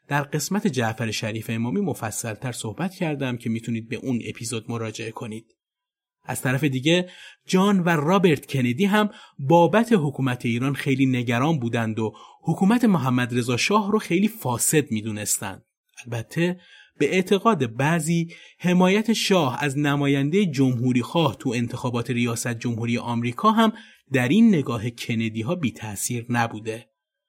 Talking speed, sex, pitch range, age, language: 135 wpm, male, 120-185 Hz, 30-49, Persian